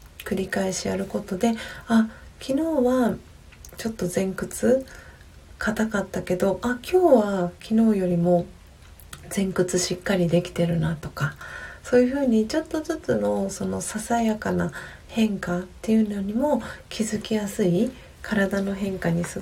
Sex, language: female, Japanese